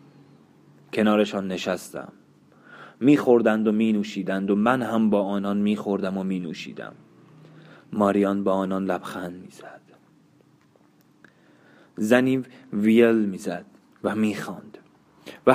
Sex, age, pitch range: male, 20-39, 100-120 Hz